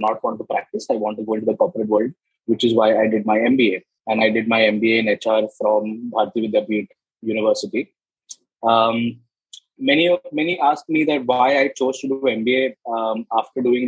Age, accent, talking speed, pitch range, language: 20-39, Indian, 200 wpm, 110-135 Hz, English